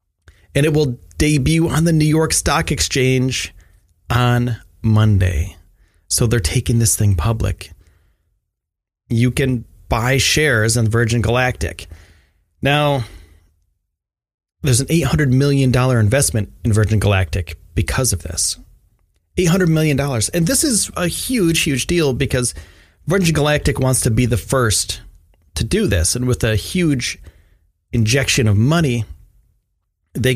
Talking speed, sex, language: 130 wpm, male, English